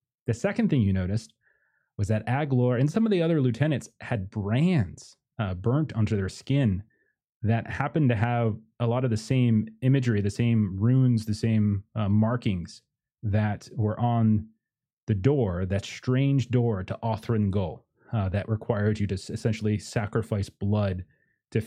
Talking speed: 160 wpm